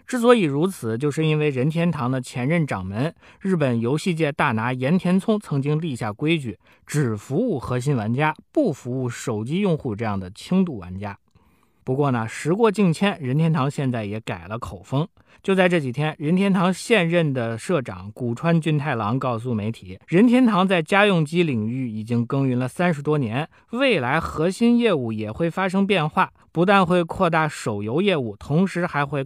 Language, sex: Chinese, male